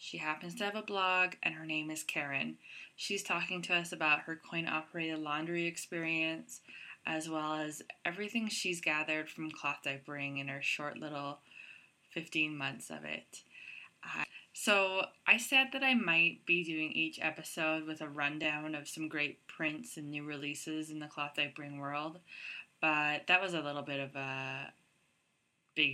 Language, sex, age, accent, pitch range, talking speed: English, female, 20-39, American, 145-175 Hz, 165 wpm